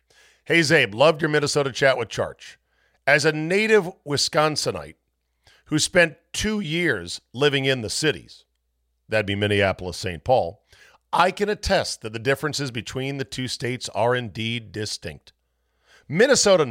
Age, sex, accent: 50-69, male, American